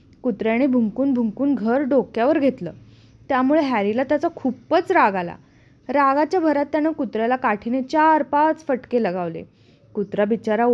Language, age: Marathi, 20-39